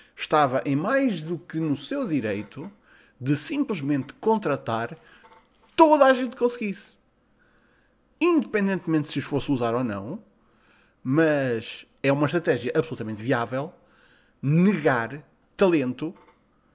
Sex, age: male, 20-39